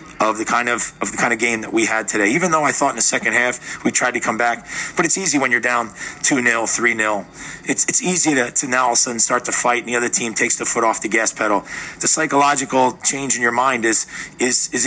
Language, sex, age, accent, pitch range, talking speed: English, male, 40-59, American, 115-140 Hz, 280 wpm